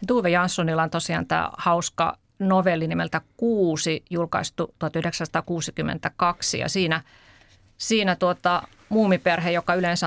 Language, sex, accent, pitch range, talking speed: Finnish, female, native, 150-180 Hz, 105 wpm